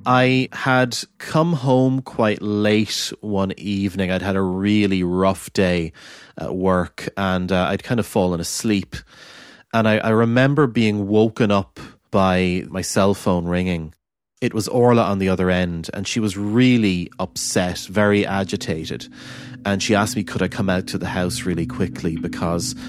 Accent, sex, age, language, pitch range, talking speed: Irish, male, 30-49, English, 90-125 Hz, 165 wpm